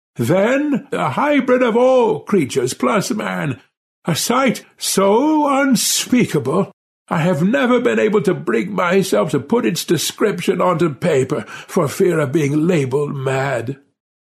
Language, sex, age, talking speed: English, male, 60-79, 135 wpm